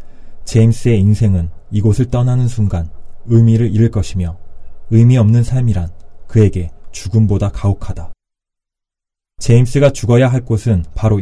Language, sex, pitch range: Korean, male, 90-120 Hz